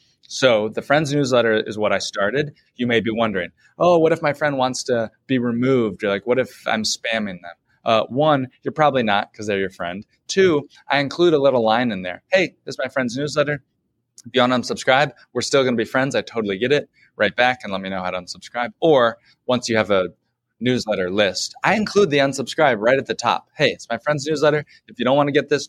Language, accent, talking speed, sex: English, American, 235 wpm, male